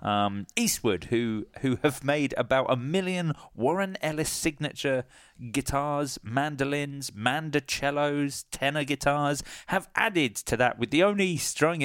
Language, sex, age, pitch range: English, male, 30-49, 105-145 Hz